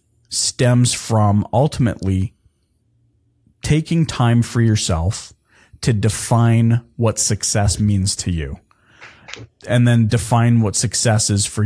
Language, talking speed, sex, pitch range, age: English, 110 wpm, male, 105-135 Hz, 30-49